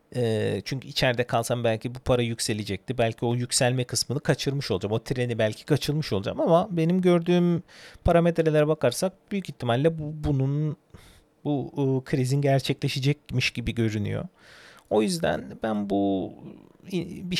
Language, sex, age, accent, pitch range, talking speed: Turkish, male, 40-59, native, 120-170 Hz, 130 wpm